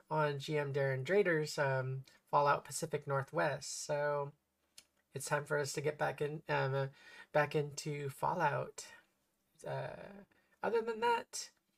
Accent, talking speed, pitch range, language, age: American, 130 wpm, 140-175 Hz, English, 20-39